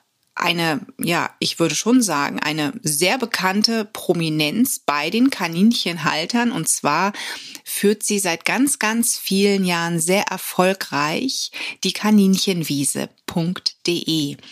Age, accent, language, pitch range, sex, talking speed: 30-49, German, German, 170-225 Hz, female, 105 wpm